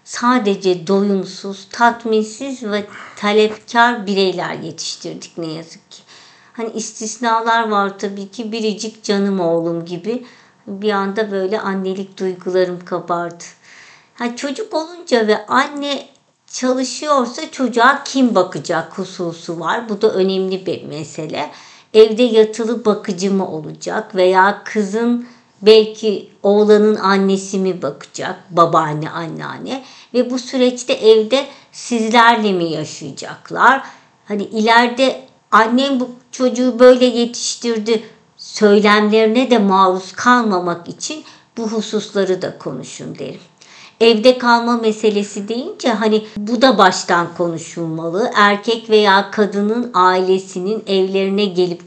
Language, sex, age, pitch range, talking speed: Turkish, male, 50-69, 190-240 Hz, 110 wpm